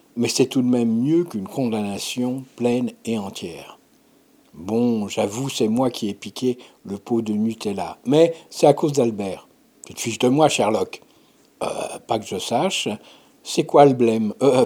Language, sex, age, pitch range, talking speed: French, male, 60-79, 115-145 Hz, 175 wpm